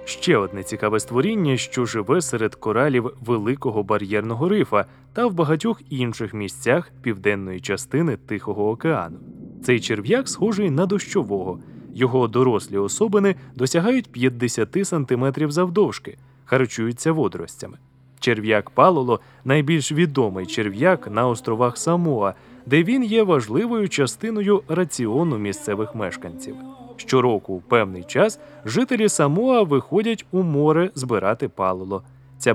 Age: 20-39